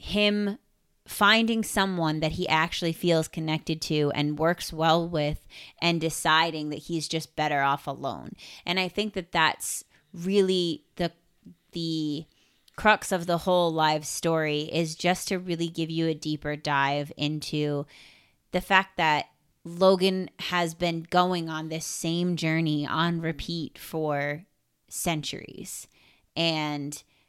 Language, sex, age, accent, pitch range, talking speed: English, female, 30-49, American, 150-175 Hz, 135 wpm